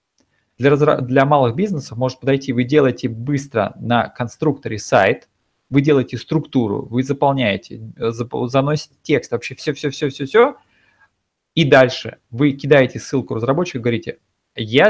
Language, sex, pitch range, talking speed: Russian, male, 115-150 Hz, 115 wpm